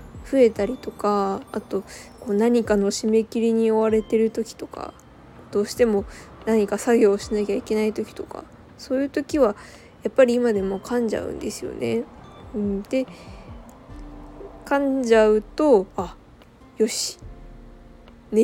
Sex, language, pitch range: female, Japanese, 210-245 Hz